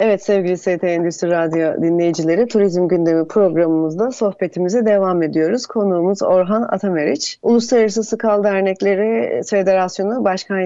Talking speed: 115 wpm